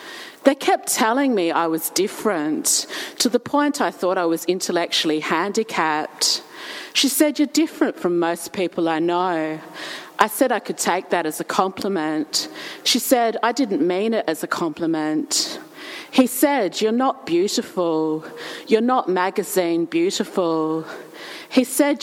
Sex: female